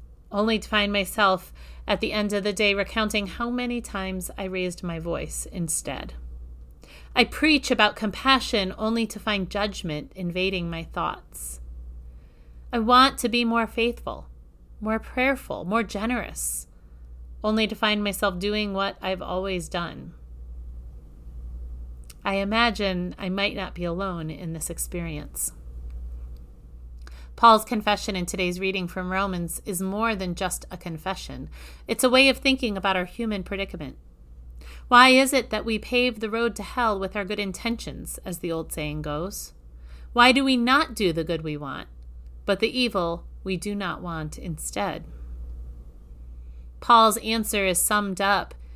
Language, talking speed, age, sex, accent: English, 150 wpm, 30-49, female, American